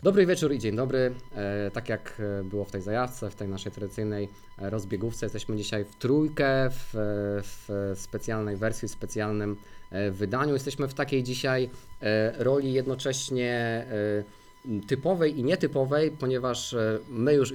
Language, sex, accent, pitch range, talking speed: Polish, male, native, 110-140 Hz, 135 wpm